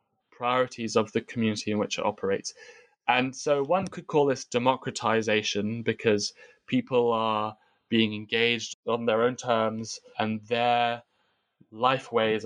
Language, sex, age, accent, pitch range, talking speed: English, male, 20-39, British, 110-155 Hz, 135 wpm